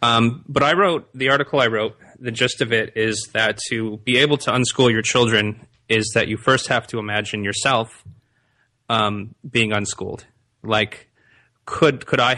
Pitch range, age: 105-125 Hz, 30-49